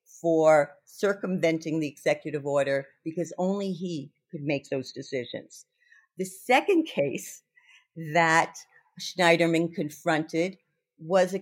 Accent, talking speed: American, 105 wpm